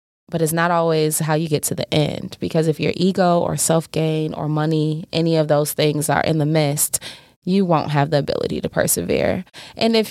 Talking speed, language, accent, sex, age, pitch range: 210 wpm, English, American, female, 20-39, 150-170 Hz